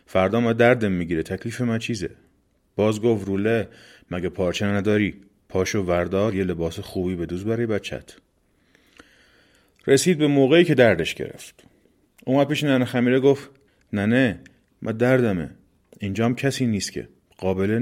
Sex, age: male, 30-49